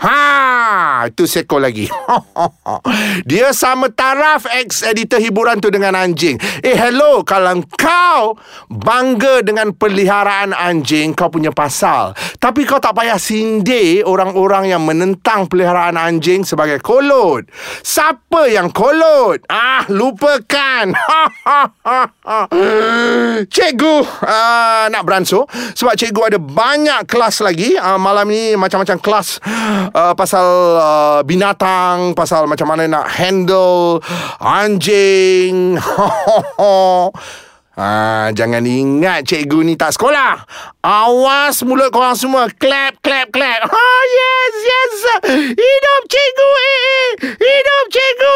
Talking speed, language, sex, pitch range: 110 wpm, Malay, male, 185-280 Hz